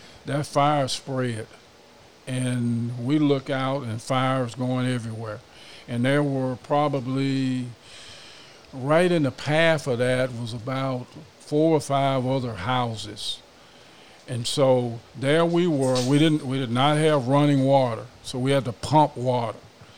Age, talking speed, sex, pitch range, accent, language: 50-69, 140 wpm, male, 120-140 Hz, American, English